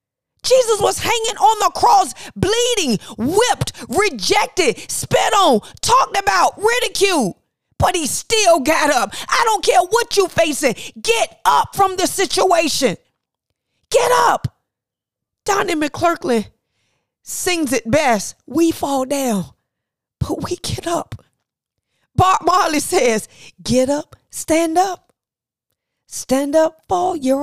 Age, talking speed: 40-59, 120 wpm